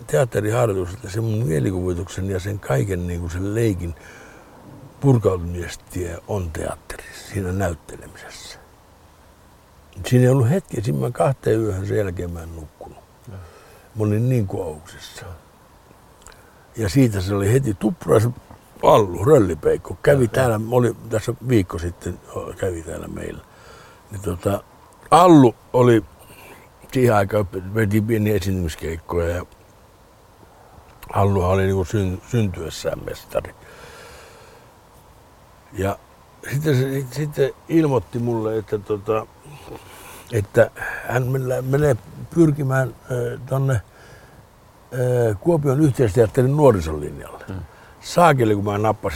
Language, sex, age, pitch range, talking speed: Finnish, male, 60-79, 95-130 Hz, 100 wpm